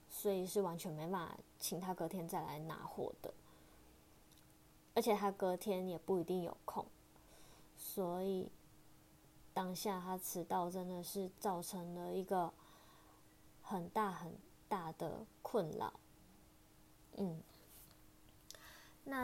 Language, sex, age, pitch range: Chinese, female, 20-39, 180-215 Hz